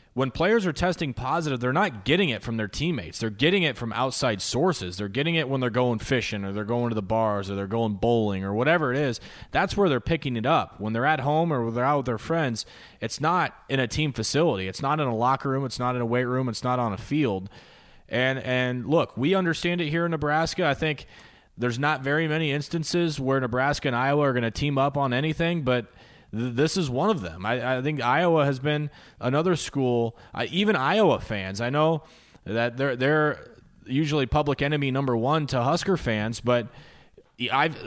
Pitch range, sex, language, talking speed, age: 120-155 Hz, male, English, 220 wpm, 30-49